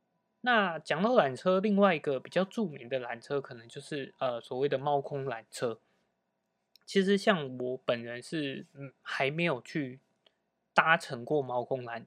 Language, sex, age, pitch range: Chinese, male, 20-39, 120-175 Hz